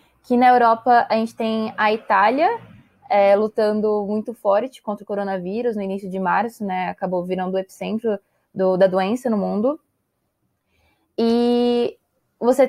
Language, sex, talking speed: Portuguese, female, 145 wpm